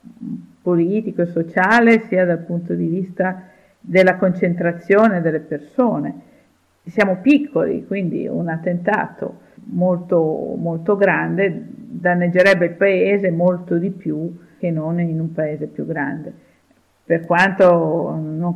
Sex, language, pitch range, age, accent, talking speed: female, Italian, 165-195 Hz, 50-69, native, 115 wpm